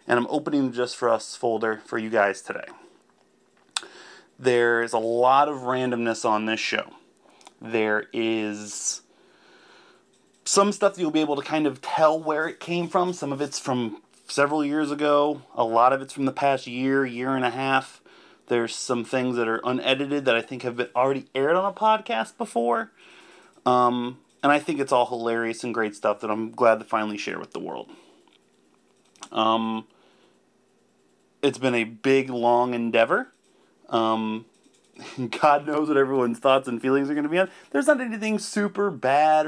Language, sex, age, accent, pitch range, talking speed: English, male, 30-49, American, 115-145 Hz, 175 wpm